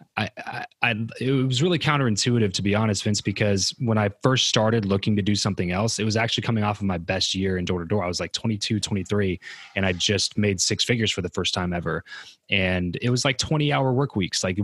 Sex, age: male, 20-39